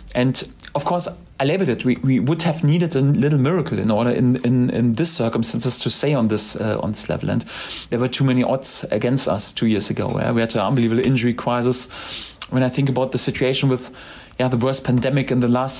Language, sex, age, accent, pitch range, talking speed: English, male, 30-49, German, 125-145 Hz, 230 wpm